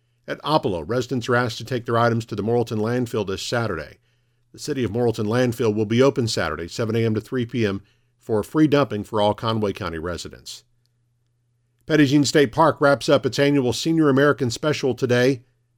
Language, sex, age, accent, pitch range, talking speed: English, male, 50-69, American, 110-135 Hz, 185 wpm